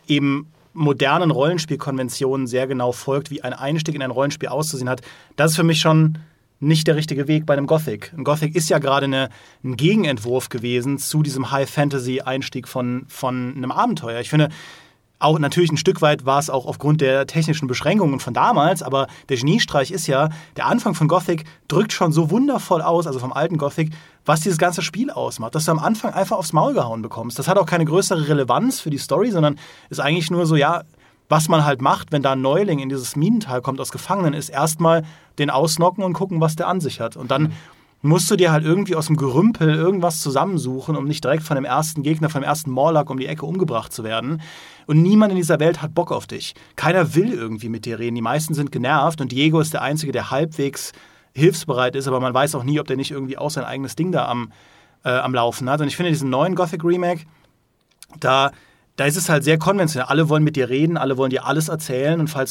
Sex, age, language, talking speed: male, 30-49, German, 220 wpm